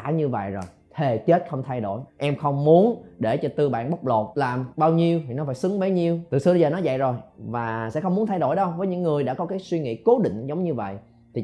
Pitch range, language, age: 120-165 Hz, Vietnamese, 20-39